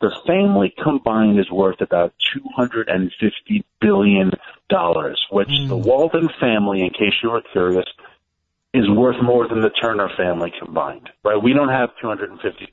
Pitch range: 95-130 Hz